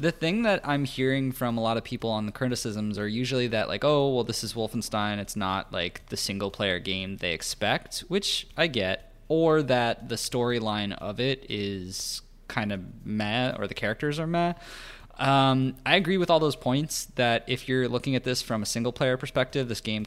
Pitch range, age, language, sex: 100-125 Hz, 20-39, English, male